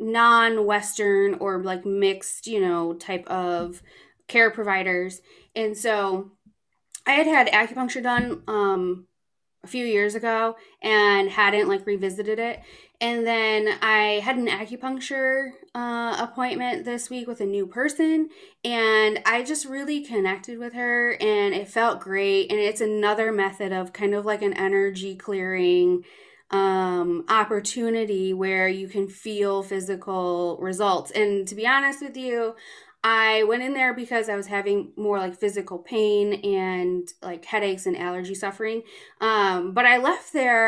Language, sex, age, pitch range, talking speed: English, female, 20-39, 195-235 Hz, 150 wpm